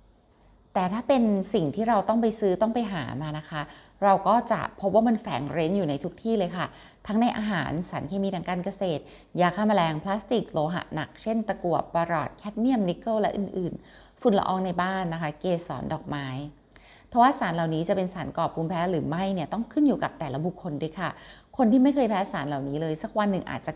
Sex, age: female, 30-49